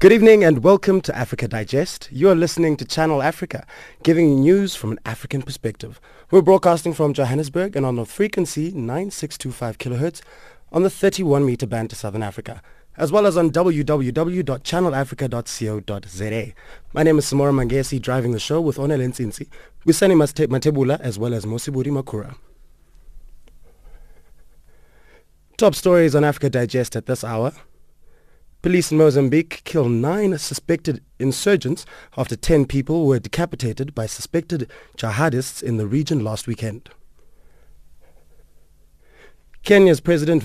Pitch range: 115-160 Hz